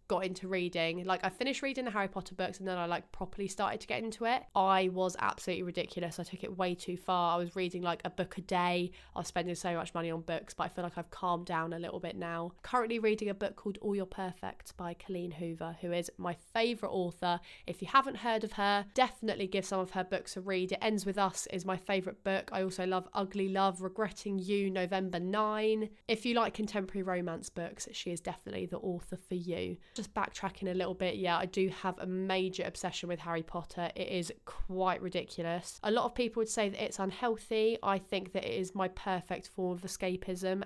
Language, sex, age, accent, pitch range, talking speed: English, female, 20-39, British, 175-200 Hz, 230 wpm